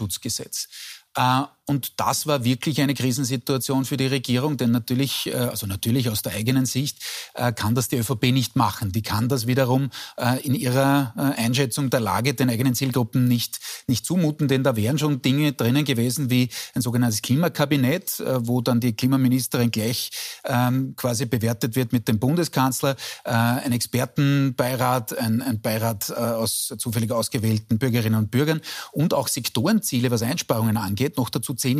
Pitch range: 115-135 Hz